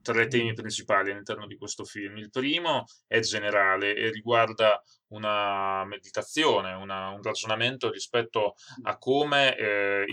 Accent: native